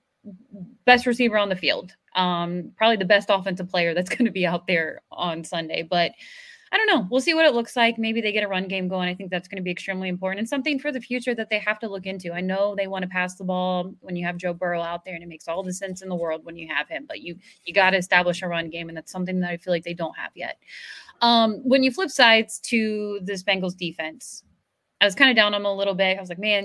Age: 20-39